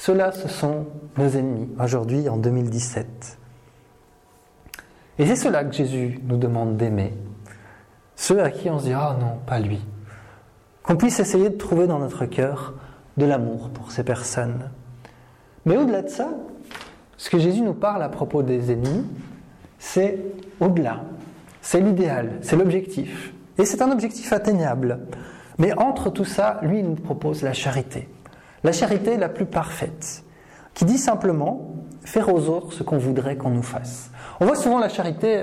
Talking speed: 160 wpm